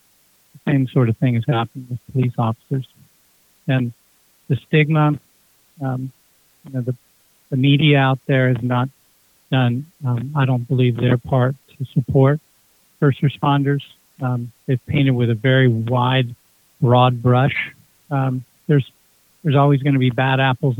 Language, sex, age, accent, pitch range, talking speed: English, male, 50-69, American, 125-140 Hz, 145 wpm